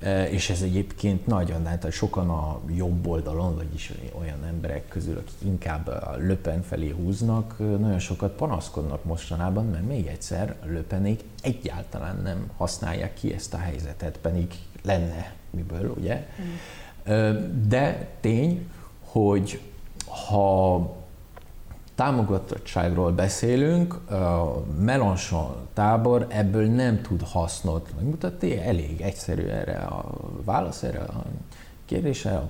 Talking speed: 115 wpm